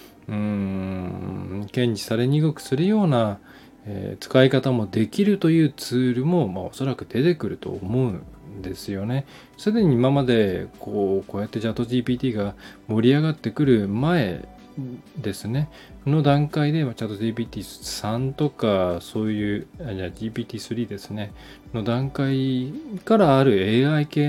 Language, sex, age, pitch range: Japanese, male, 20-39, 105-150 Hz